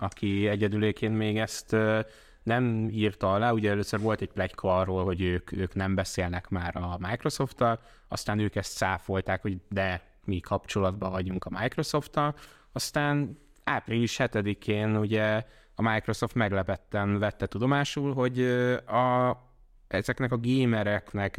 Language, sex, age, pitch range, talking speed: Hungarian, male, 20-39, 100-115 Hz, 130 wpm